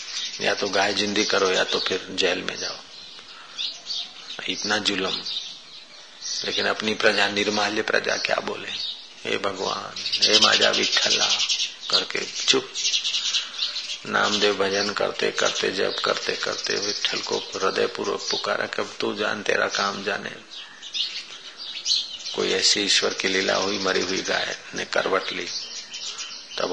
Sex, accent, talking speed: male, native, 130 wpm